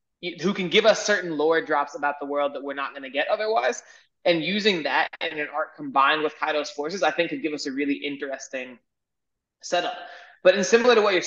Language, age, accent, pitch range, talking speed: English, 20-39, American, 140-175 Hz, 225 wpm